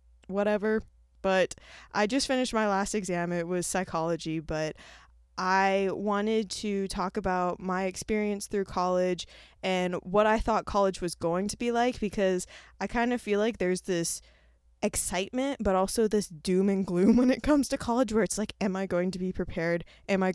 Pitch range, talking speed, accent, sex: 165-205 Hz, 185 wpm, American, female